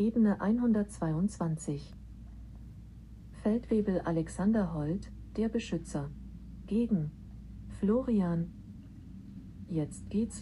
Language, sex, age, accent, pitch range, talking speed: German, female, 40-59, German, 155-205 Hz, 65 wpm